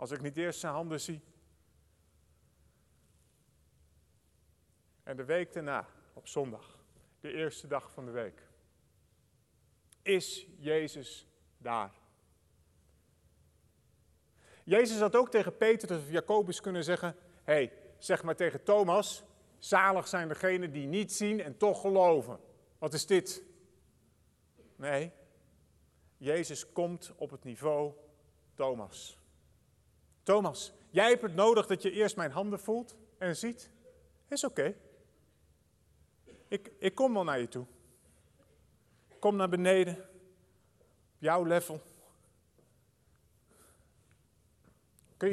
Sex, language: male, Dutch